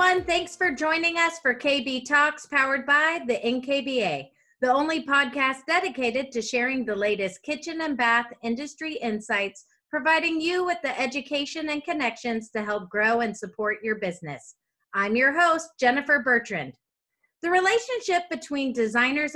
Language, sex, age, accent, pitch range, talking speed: English, female, 30-49, American, 225-300 Hz, 145 wpm